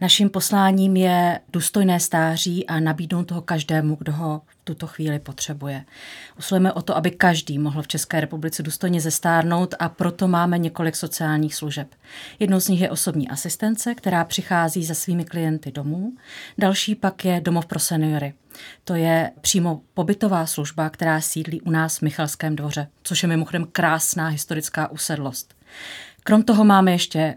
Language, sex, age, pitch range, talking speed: Czech, female, 30-49, 155-185 Hz, 160 wpm